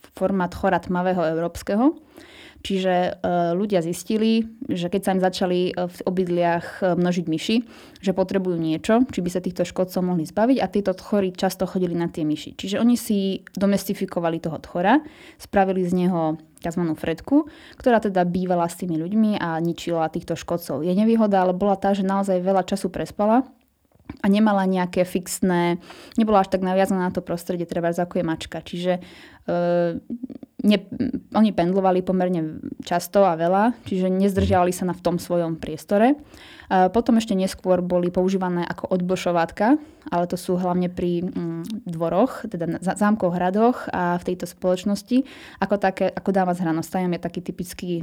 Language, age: Slovak, 20-39